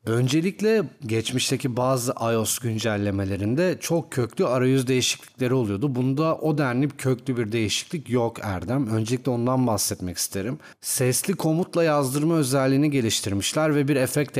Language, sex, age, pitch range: Turkish, male, 40-59, 110-135 Hz